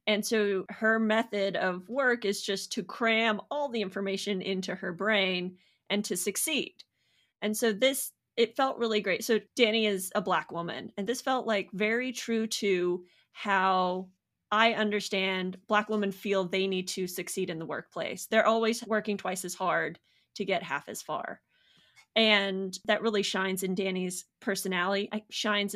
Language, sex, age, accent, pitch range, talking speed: English, female, 30-49, American, 190-225 Hz, 165 wpm